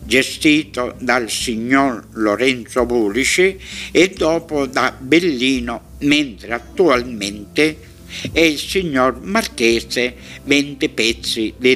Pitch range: 110-160 Hz